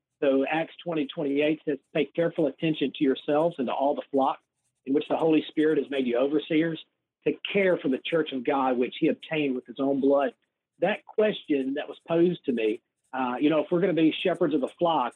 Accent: American